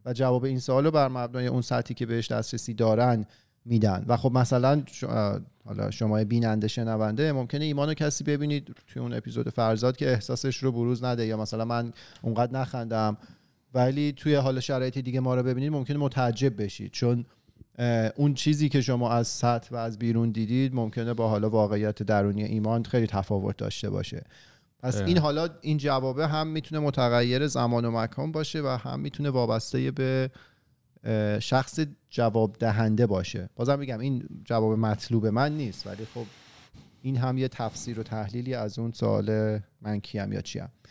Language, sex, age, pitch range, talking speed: Persian, male, 40-59, 110-135 Hz, 165 wpm